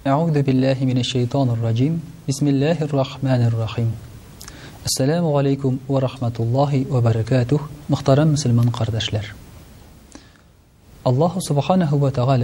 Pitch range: 120-160 Hz